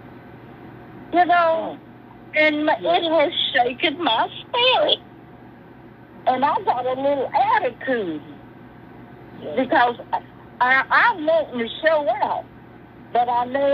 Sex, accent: female, American